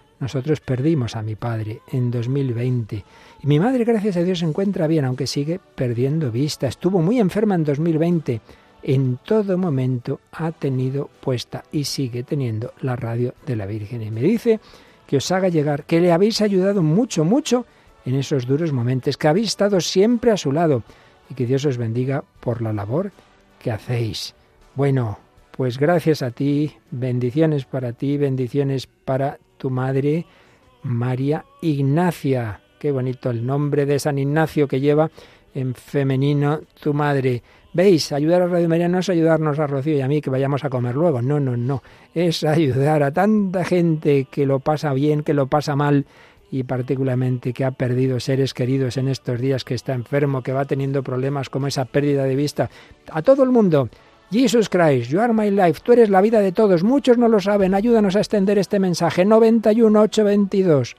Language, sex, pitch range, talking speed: Spanish, male, 130-170 Hz, 180 wpm